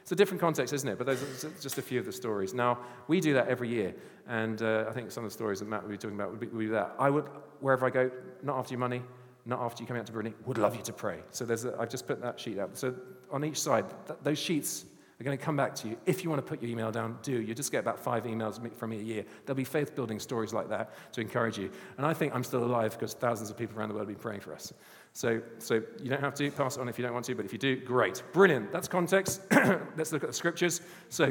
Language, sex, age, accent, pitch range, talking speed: English, male, 40-59, British, 115-155 Hz, 300 wpm